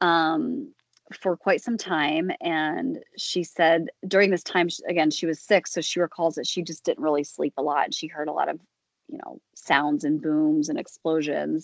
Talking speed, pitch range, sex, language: 195 wpm, 155-180 Hz, female, English